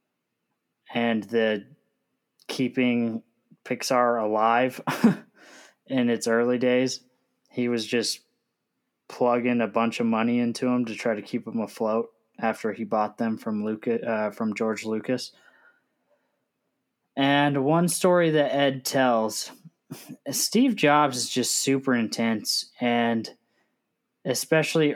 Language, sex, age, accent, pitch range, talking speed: English, male, 20-39, American, 110-135 Hz, 120 wpm